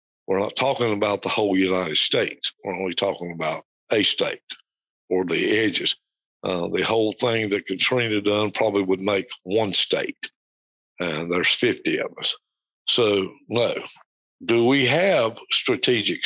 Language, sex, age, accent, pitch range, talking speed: English, male, 60-79, American, 95-125 Hz, 150 wpm